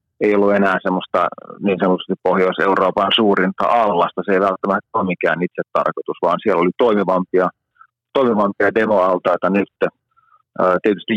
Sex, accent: male, native